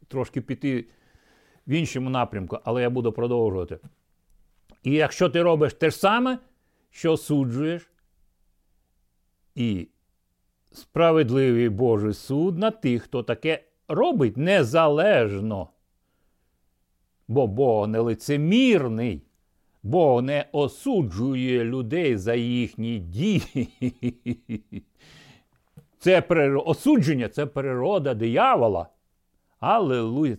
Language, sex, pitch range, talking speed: Ukrainian, male, 100-145 Hz, 90 wpm